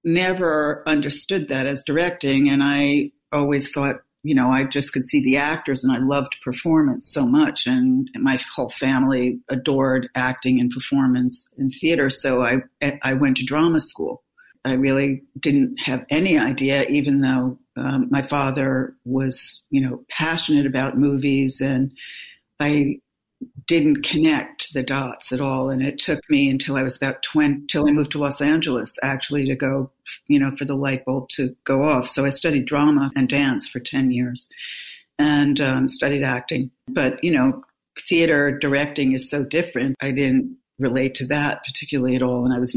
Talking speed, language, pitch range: 175 wpm, English, 130-150 Hz